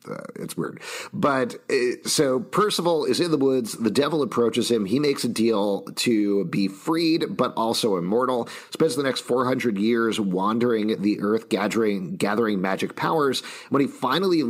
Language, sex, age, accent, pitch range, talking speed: English, male, 40-59, American, 95-120 Hz, 165 wpm